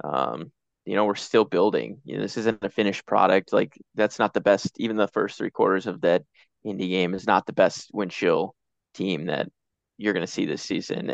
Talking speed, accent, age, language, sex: 215 wpm, American, 20-39, English, male